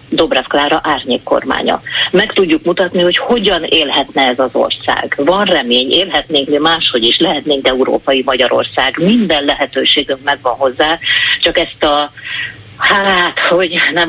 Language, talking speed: Hungarian, 140 wpm